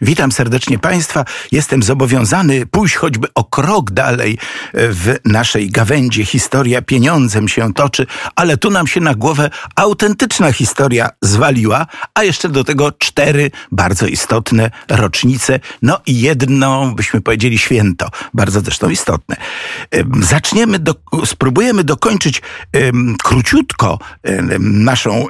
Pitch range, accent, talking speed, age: 115-145 Hz, native, 120 wpm, 50-69